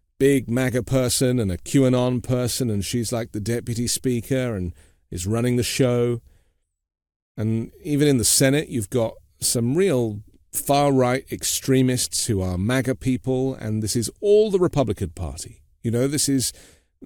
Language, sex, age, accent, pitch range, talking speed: English, male, 40-59, British, 95-135 Hz, 155 wpm